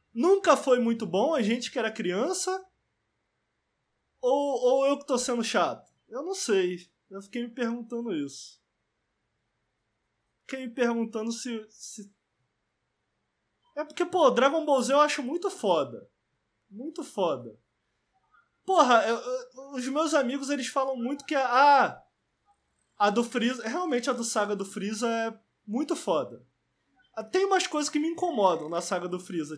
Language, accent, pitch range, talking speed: Portuguese, Brazilian, 210-275 Hz, 150 wpm